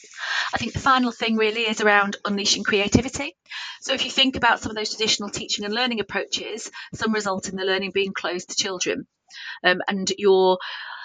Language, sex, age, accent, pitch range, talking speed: English, female, 30-49, British, 190-220 Hz, 190 wpm